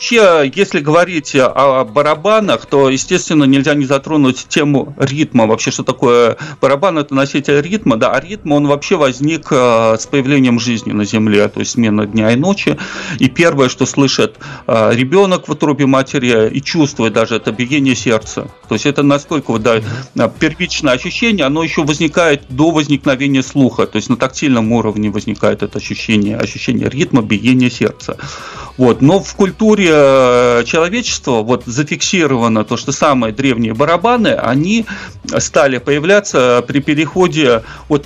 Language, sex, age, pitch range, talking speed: Russian, male, 40-59, 125-165 Hz, 145 wpm